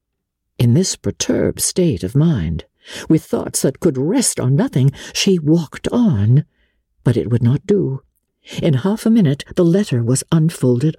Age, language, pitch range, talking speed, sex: 60-79, English, 125-200 Hz, 160 wpm, female